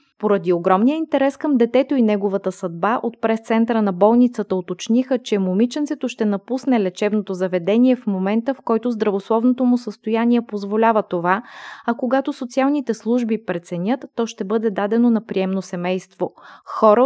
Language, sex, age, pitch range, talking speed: Bulgarian, female, 20-39, 200-250 Hz, 145 wpm